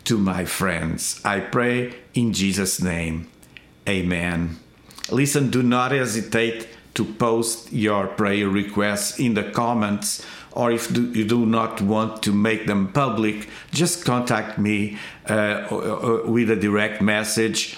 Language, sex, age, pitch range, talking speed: English, male, 50-69, 105-125 Hz, 130 wpm